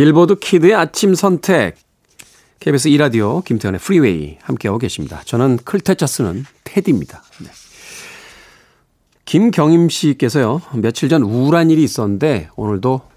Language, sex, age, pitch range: Korean, male, 40-59, 100-155 Hz